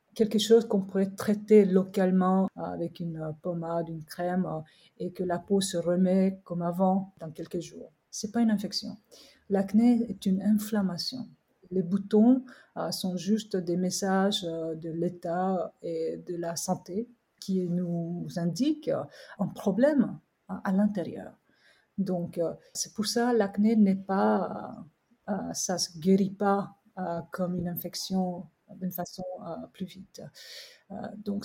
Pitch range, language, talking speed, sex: 175-225 Hz, French, 140 wpm, female